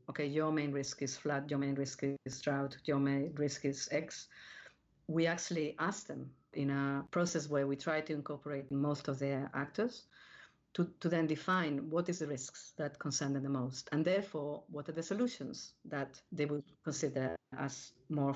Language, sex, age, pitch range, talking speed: English, female, 50-69, 140-165 Hz, 185 wpm